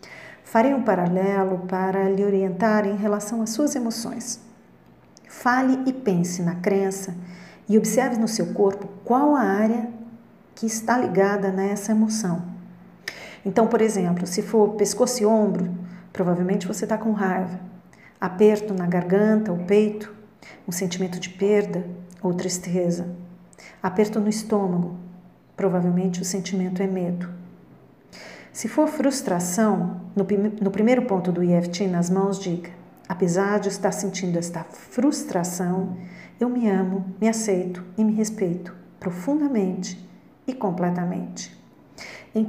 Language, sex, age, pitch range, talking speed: Portuguese, female, 50-69, 185-220 Hz, 125 wpm